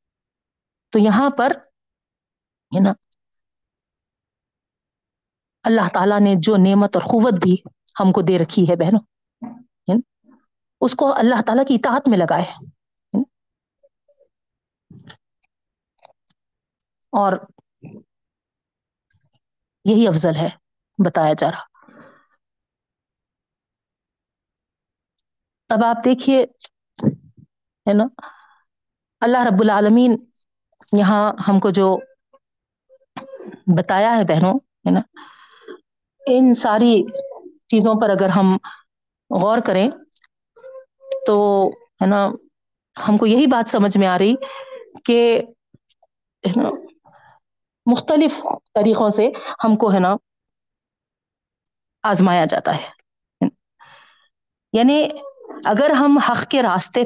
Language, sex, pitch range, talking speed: Urdu, female, 205-275 Hz, 90 wpm